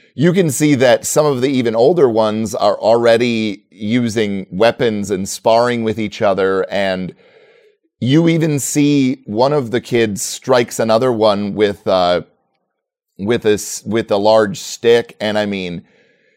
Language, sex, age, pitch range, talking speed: English, male, 30-49, 100-130 Hz, 150 wpm